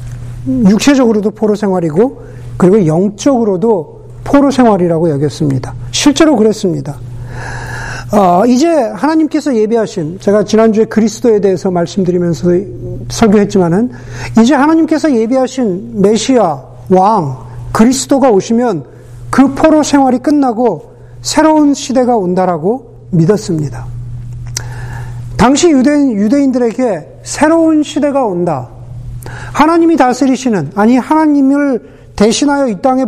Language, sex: Korean, male